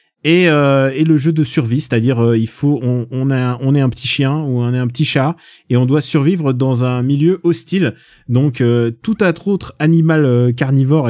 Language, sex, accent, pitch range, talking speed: French, male, French, 120-155 Hz, 190 wpm